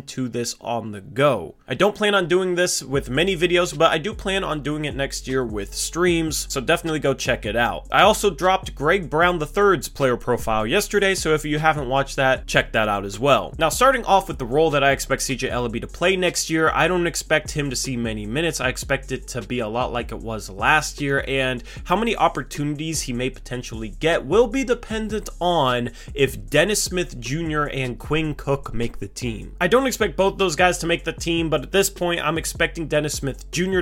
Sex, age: male, 20-39